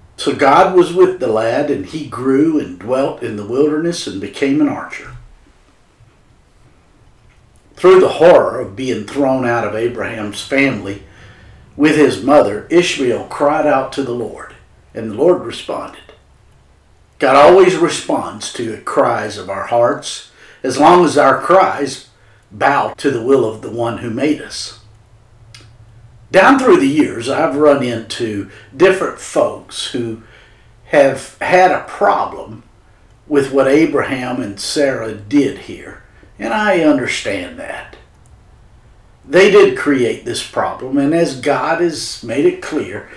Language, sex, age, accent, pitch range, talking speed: English, male, 50-69, American, 110-155 Hz, 140 wpm